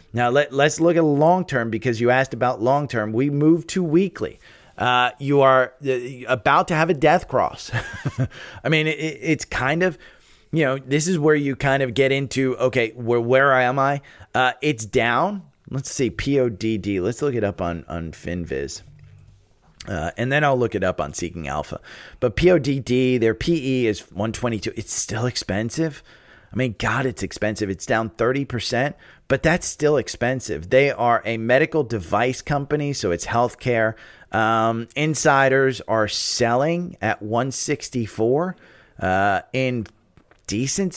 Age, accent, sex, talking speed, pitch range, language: 30-49, American, male, 165 wpm, 110-140 Hz, English